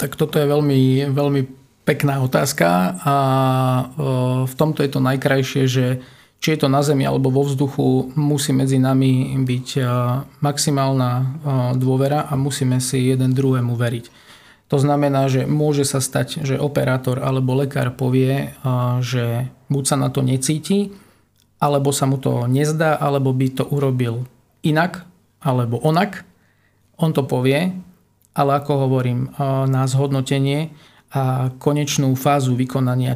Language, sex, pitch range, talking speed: Slovak, male, 130-145 Hz, 135 wpm